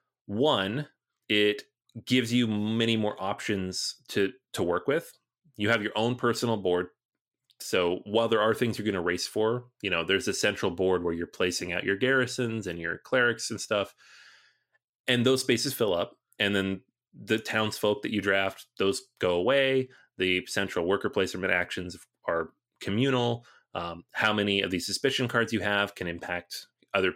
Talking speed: 170 wpm